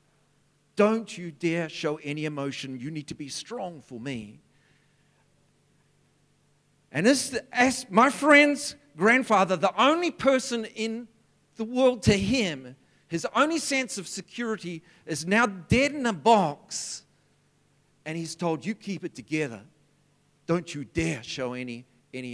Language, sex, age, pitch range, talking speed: English, male, 50-69, 145-225 Hz, 135 wpm